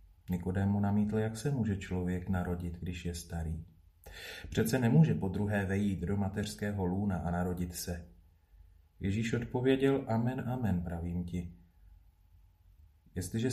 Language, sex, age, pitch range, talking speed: Slovak, male, 40-59, 90-110 Hz, 120 wpm